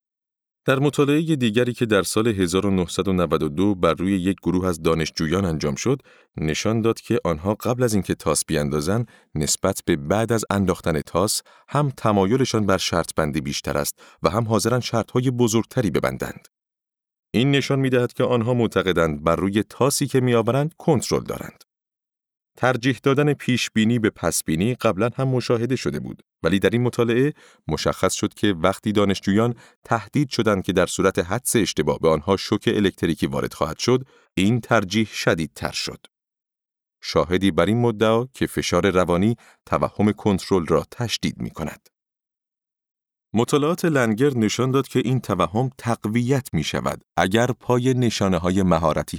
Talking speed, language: 150 wpm, Persian